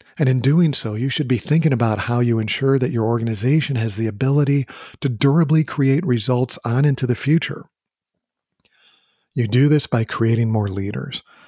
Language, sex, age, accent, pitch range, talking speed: English, male, 40-59, American, 115-140 Hz, 175 wpm